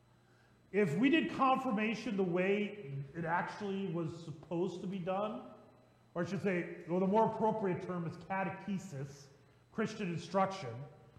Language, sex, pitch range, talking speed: English, male, 150-215 Hz, 135 wpm